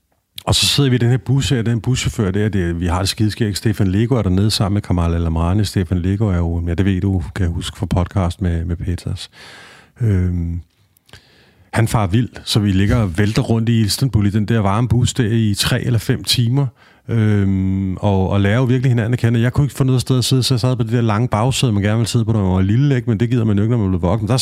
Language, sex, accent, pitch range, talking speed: Danish, male, native, 95-120 Hz, 270 wpm